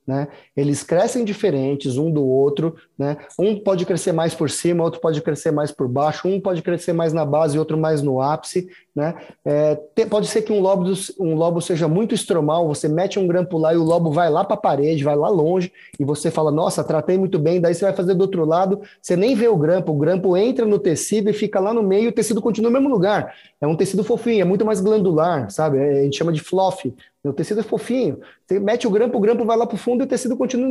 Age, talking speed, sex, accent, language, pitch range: 20-39, 245 wpm, male, Brazilian, Portuguese, 150-200 Hz